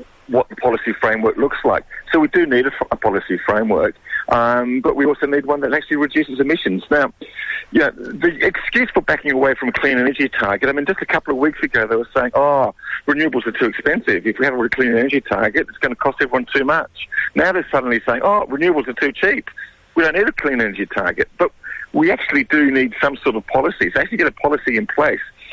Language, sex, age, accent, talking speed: English, male, 50-69, British, 230 wpm